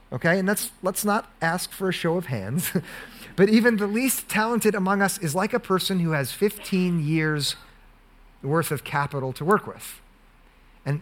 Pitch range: 155-200 Hz